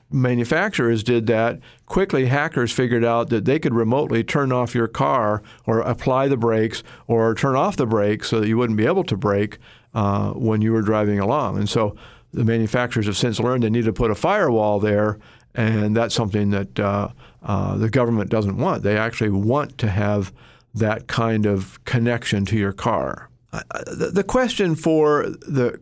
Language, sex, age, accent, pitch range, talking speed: English, male, 50-69, American, 110-135 Hz, 180 wpm